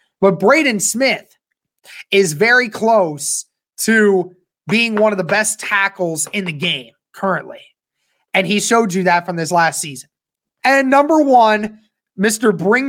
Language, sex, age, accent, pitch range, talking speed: English, male, 20-39, American, 195-245 Hz, 145 wpm